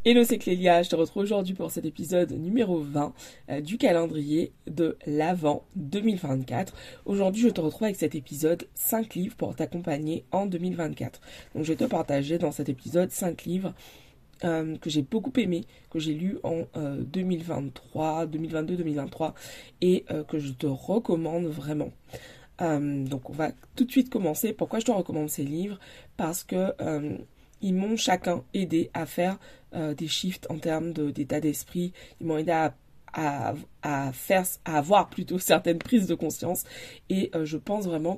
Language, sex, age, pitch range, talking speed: French, female, 20-39, 155-185 Hz, 175 wpm